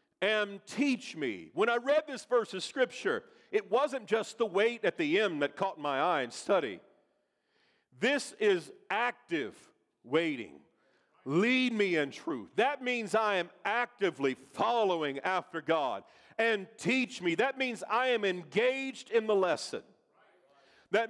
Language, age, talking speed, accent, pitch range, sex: English, 50-69, 150 wpm, American, 190-265 Hz, male